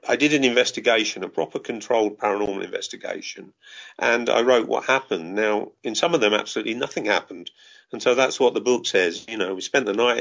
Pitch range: 100-120 Hz